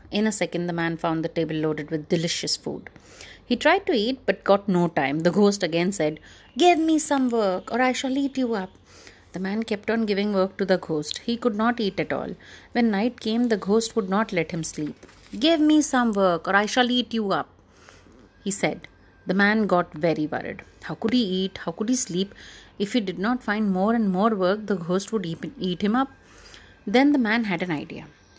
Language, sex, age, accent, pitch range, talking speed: English, female, 30-49, Indian, 175-235 Hz, 220 wpm